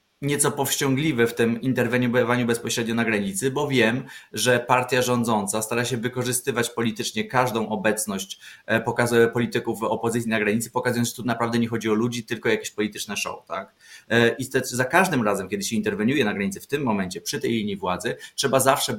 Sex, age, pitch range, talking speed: male, 20-39, 115-135 Hz, 175 wpm